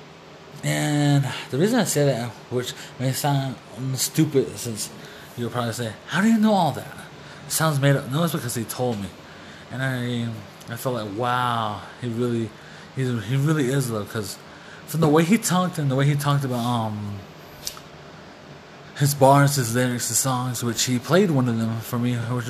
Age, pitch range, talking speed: 20-39, 115-135 Hz, 190 wpm